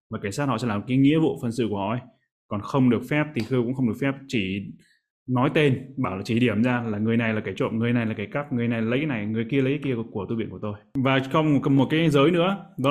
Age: 20-39